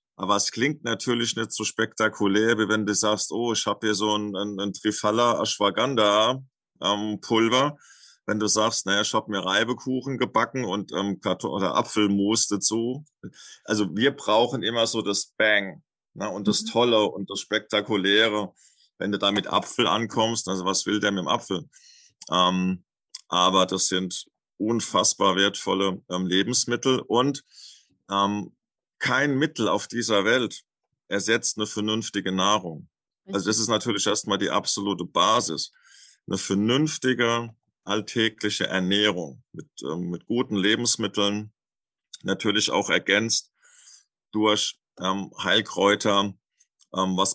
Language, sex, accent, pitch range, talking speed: German, male, German, 95-115 Hz, 135 wpm